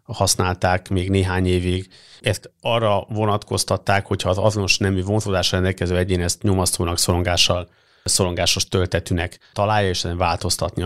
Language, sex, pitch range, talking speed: Hungarian, male, 90-100 Hz, 135 wpm